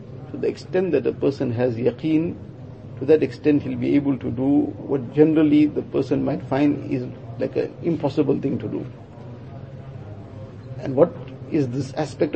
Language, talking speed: English, 160 wpm